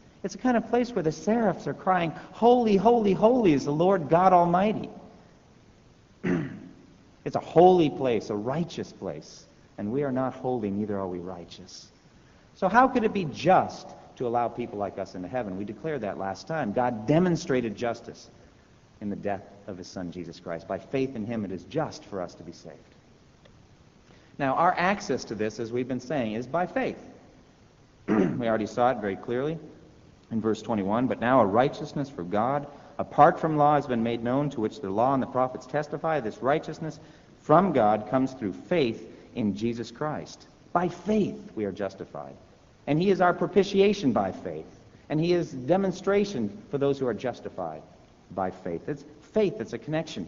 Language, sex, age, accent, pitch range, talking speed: English, male, 50-69, American, 110-175 Hz, 185 wpm